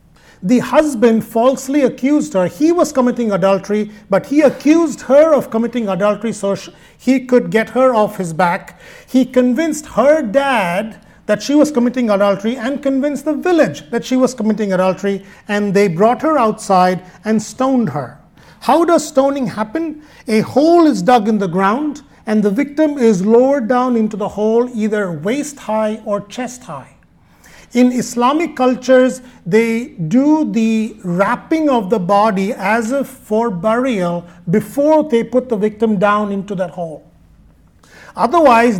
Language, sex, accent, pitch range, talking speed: English, male, Indian, 205-260 Hz, 155 wpm